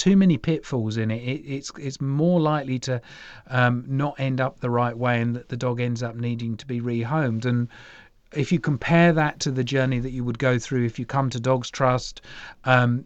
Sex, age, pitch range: male, 40-59, 125-145 Hz